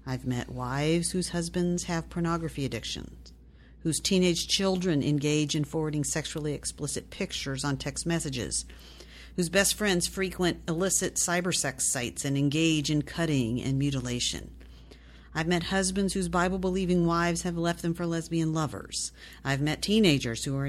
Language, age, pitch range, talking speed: English, 50-69, 135-175 Hz, 145 wpm